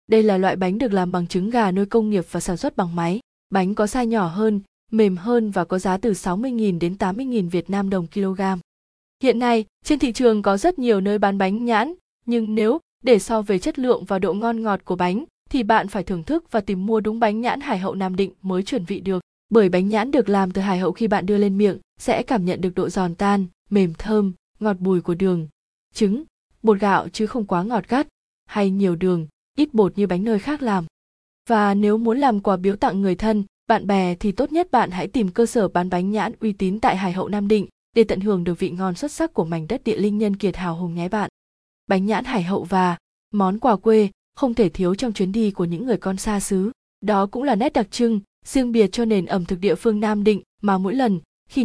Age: 20-39